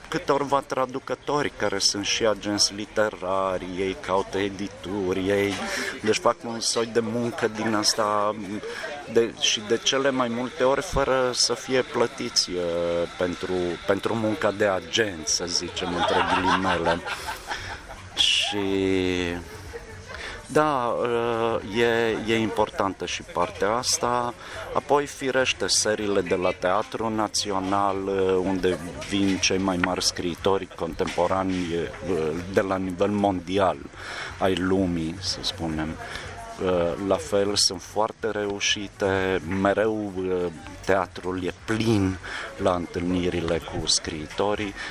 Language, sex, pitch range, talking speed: Romanian, male, 95-110 Hz, 110 wpm